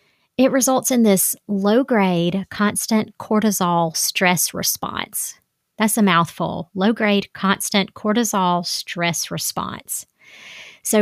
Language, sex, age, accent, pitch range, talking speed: English, female, 30-49, American, 180-215 Hz, 100 wpm